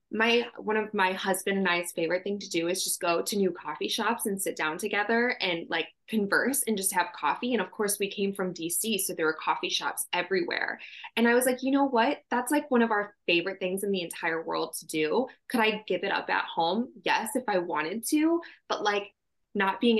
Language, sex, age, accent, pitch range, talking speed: English, female, 20-39, American, 180-235 Hz, 235 wpm